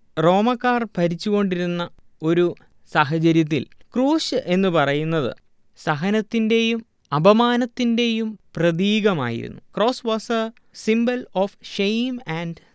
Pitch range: 145-210 Hz